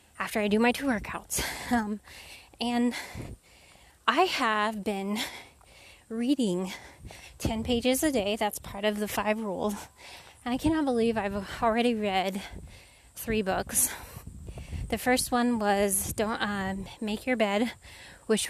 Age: 10-29